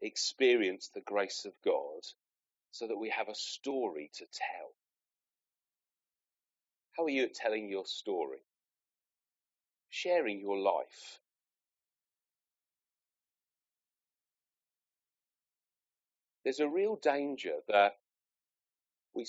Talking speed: 90 wpm